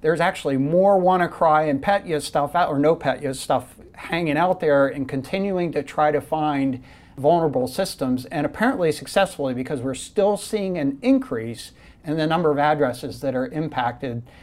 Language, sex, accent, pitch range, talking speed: English, male, American, 130-165 Hz, 180 wpm